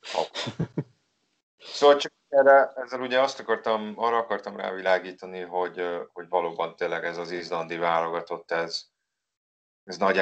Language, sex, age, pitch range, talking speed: Hungarian, male, 30-49, 85-100 Hz, 125 wpm